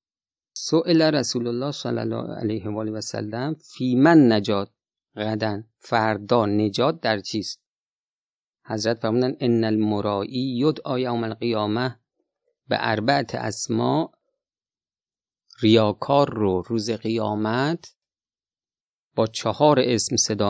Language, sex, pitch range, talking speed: Persian, male, 110-135 Hz, 95 wpm